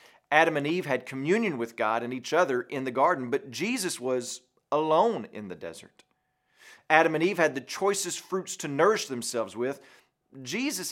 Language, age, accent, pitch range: English, 40-59, American, 130-165 Hz